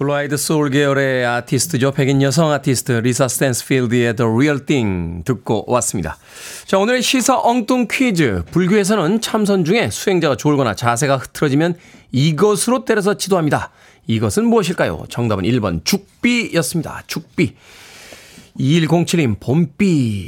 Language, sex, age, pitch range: Korean, male, 40-59, 125-185 Hz